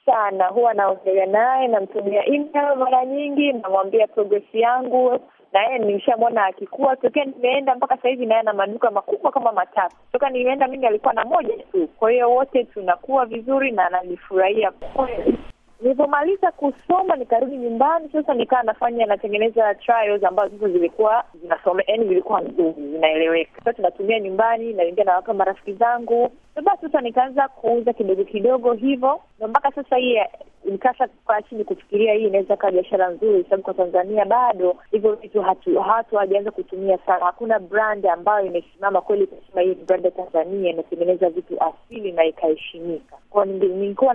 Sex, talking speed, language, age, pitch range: female, 155 wpm, Swahili, 20-39, 190-255 Hz